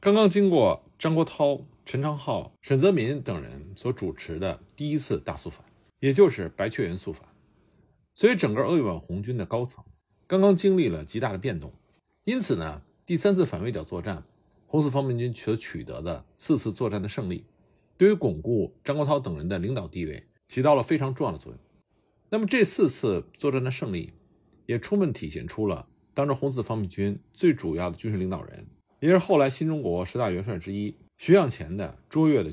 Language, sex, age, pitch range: Chinese, male, 50-69, 100-160 Hz